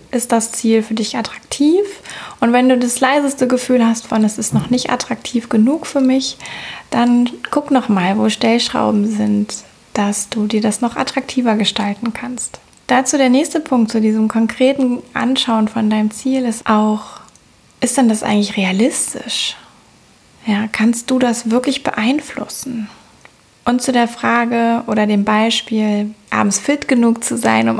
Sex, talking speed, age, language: female, 155 wpm, 20-39, German